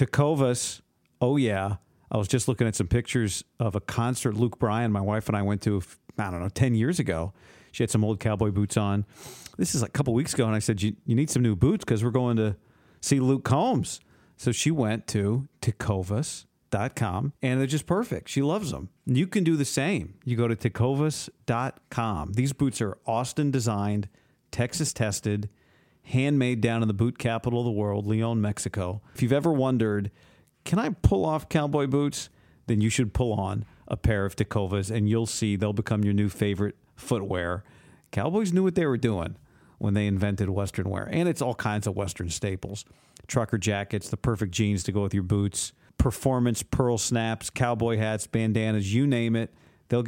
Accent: American